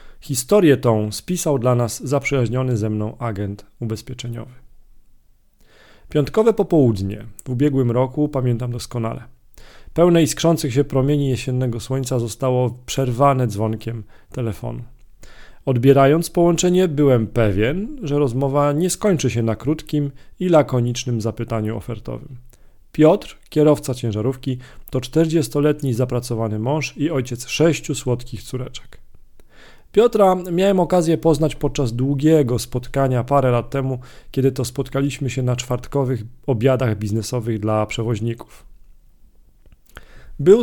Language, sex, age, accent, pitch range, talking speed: Polish, male, 40-59, native, 120-150 Hz, 110 wpm